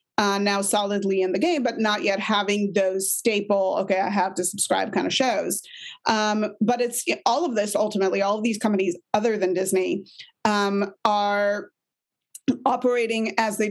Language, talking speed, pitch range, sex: English, 170 wpm, 195-230 Hz, female